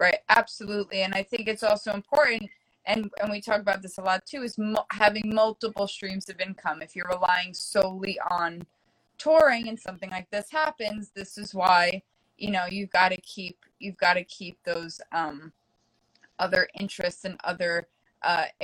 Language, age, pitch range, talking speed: English, 20-39, 185-215 Hz, 175 wpm